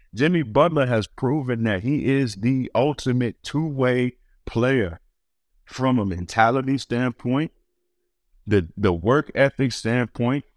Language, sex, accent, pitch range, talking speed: English, male, American, 95-140 Hz, 115 wpm